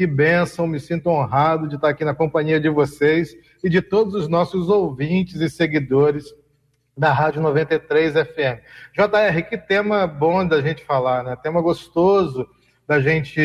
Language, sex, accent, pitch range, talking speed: Portuguese, male, Brazilian, 160-210 Hz, 160 wpm